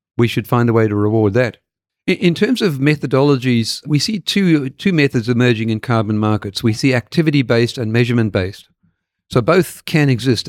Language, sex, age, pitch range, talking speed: English, male, 50-69, 115-140 Hz, 185 wpm